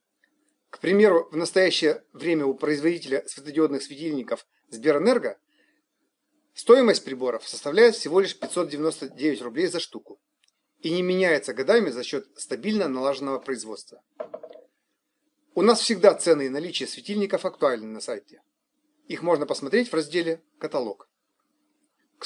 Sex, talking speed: male, 120 wpm